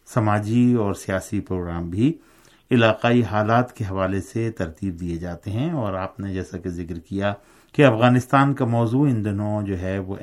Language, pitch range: Urdu, 95-110 Hz